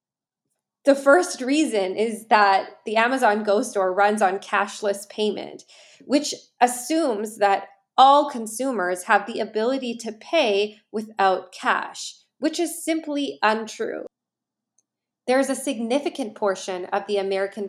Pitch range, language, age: 200-255 Hz, English, 20-39